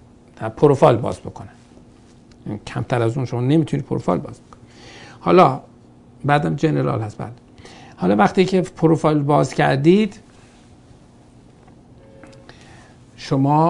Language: Persian